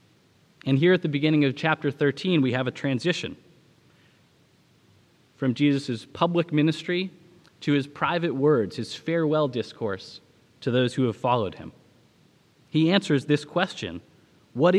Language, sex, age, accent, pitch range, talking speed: English, male, 20-39, American, 130-170 Hz, 140 wpm